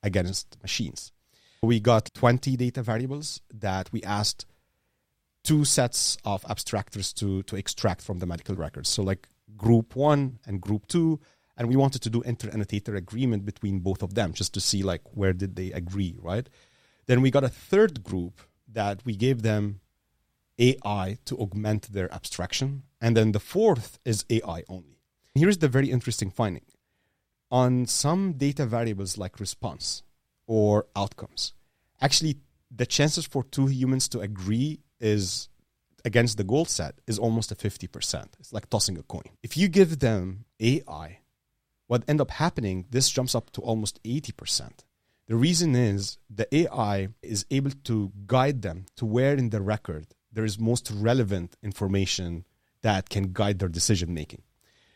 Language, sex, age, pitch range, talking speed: English, male, 30-49, 100-130 Hz, 160 wpm